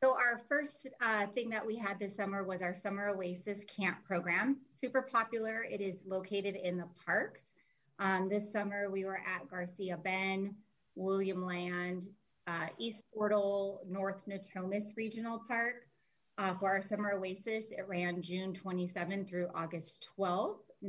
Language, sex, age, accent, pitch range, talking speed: English, female, 30-49, American, 190-215 Hz, 150 wpm